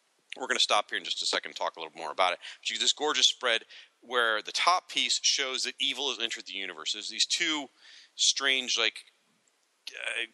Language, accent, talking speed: English, American, 225 wpm